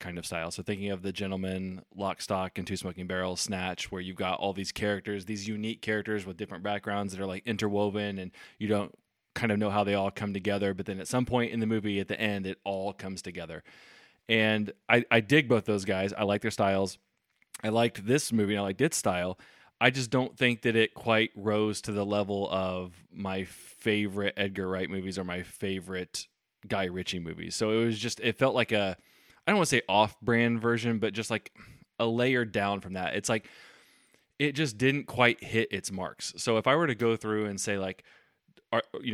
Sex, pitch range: male, 95-115 Hz